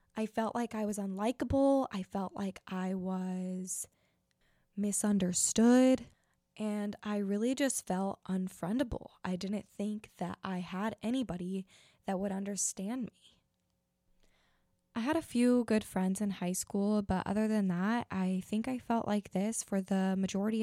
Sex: female